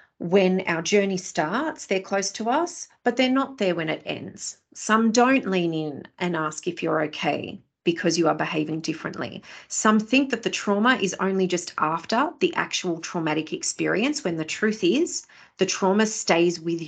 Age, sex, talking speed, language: 30-49, female, 180 wpm, English